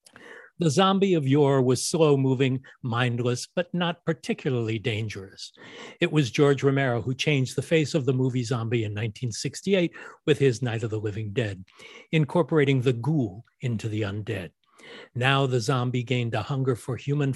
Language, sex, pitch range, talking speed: English, male, 120-150 Hz, 160 wpm